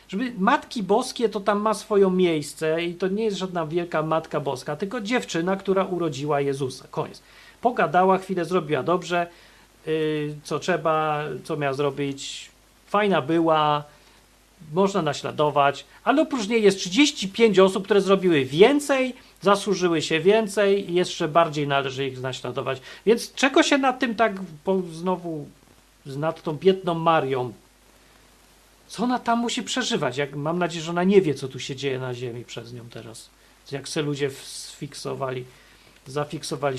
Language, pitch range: Polish, 150-200 Hz